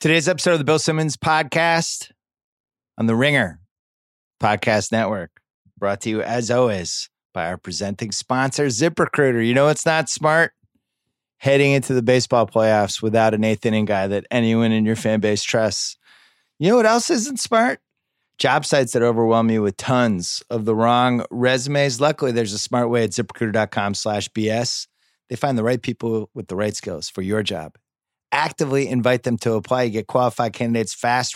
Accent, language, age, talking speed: American, English, 30-49, 175 wpm